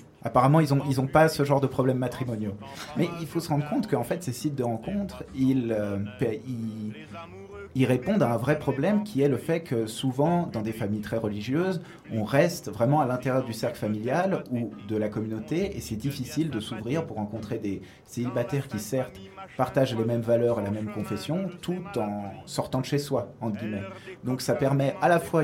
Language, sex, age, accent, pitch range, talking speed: French, male, 20-39, French, 110-145 Hz, 205 wpm